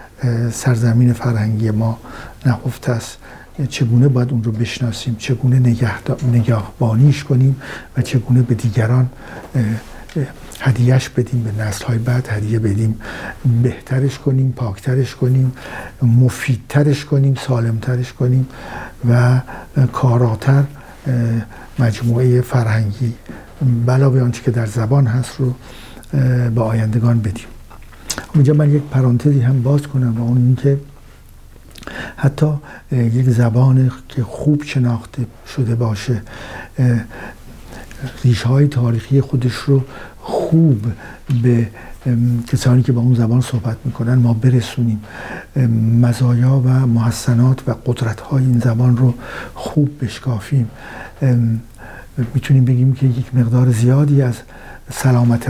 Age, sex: 60-79, male